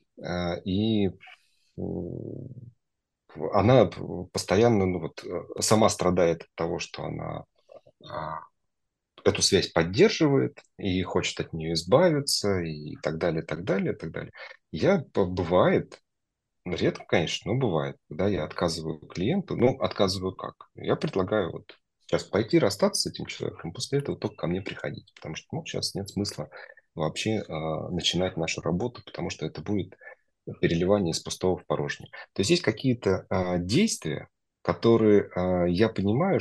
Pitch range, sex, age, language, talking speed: 90-115 Hz, male, 30-49, Russian, 135 wpm